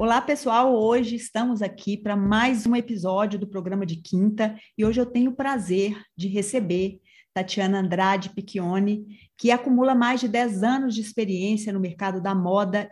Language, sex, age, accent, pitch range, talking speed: Portuguese, female, 40-59, Brazilian, 195-240 Hz, 165 wpm